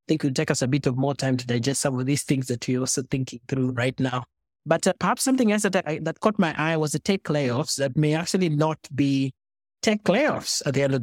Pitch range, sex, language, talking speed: 130-165 Hz, male, English, 270 wpm